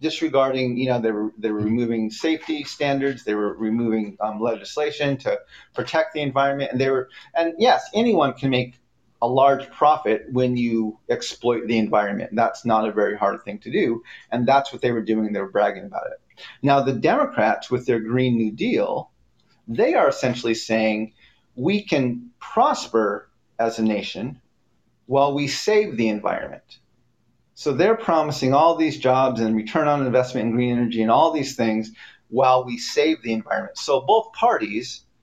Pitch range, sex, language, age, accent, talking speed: 115-140 Hz, male, English, 40-59, American, 175 wpm